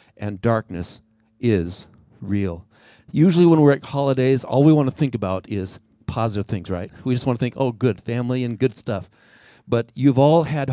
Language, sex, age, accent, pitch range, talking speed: English, male, 40-59, American, 110-150 Hz, 190 wpm